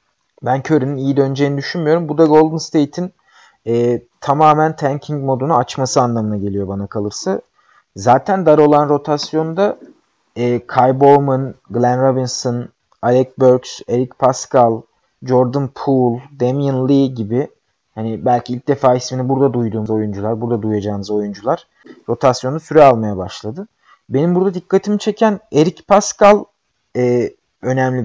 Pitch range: 120-160 Hz